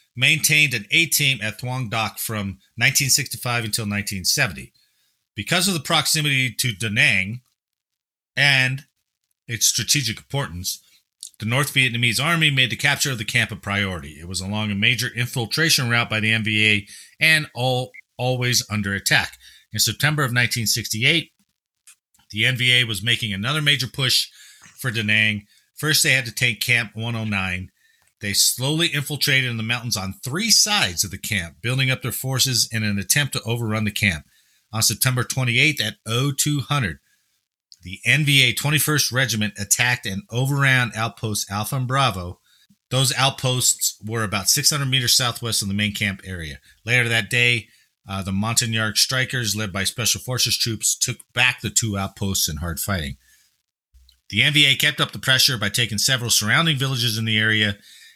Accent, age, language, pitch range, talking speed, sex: American, 40-59, English, 105-135 Hz, 160 wpm, male